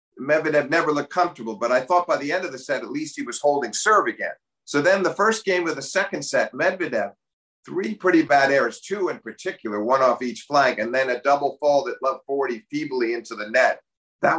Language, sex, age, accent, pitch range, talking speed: English, male, 50-69, American, 120-170 Hz, 225 wpm